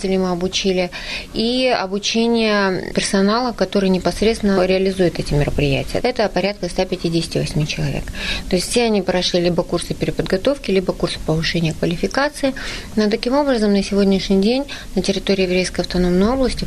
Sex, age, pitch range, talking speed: female, 30-49, 175-210 Hz, 135 wpm